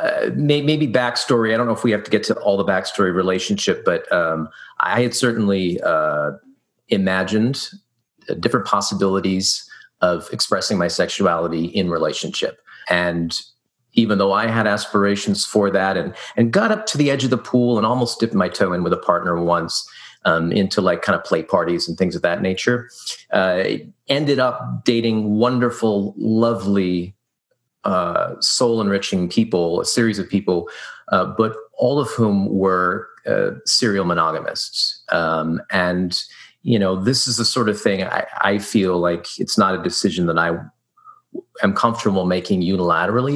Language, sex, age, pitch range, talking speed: English, male, 40-59, 95-120 Hz, 165 wpm